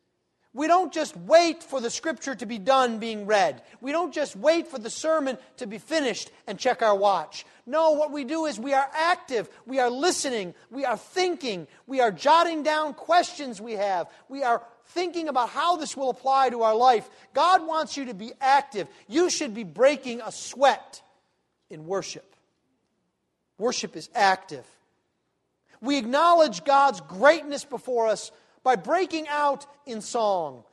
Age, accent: 40-59, American